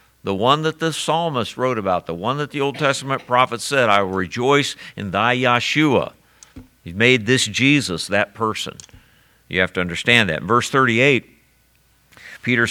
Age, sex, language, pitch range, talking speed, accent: 50-69, male, English, 95-125 Hz, 170 wpm, American